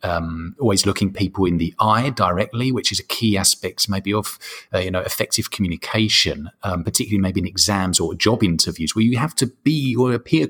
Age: 30-49